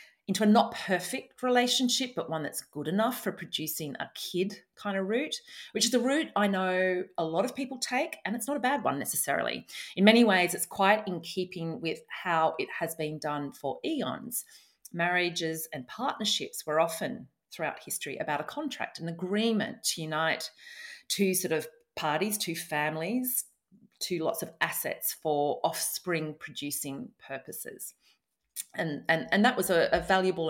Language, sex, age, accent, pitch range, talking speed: English, female, 40-59, Australian, 160-220 Hz, 170 wpm